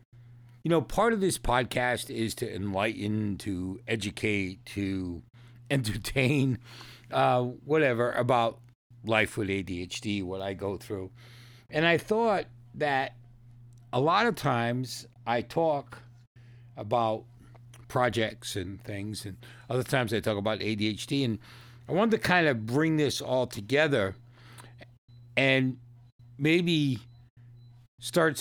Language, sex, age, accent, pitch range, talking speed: English, male, 60-79, American, 110-140 Hz, 120 wpm